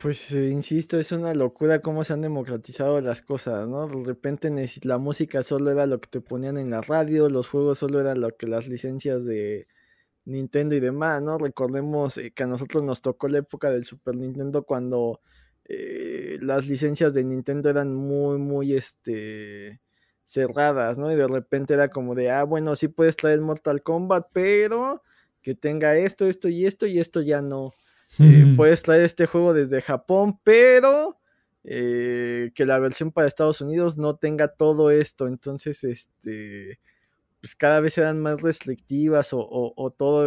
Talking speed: 175 wpm